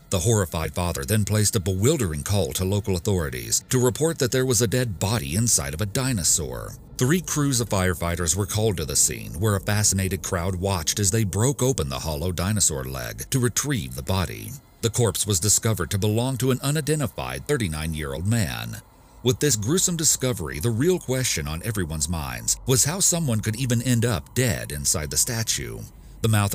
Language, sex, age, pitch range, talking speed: English, male, 40-59, 95-125 Hz, 190 wpm